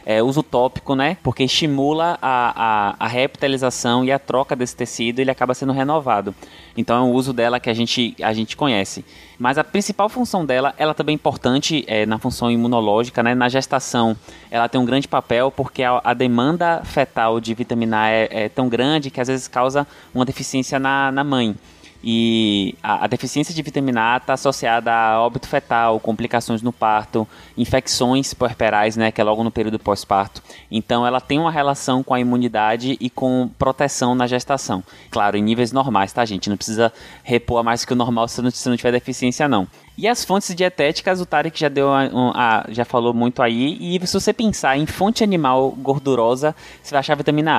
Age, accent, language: 20-39, Brazilian, Portuguese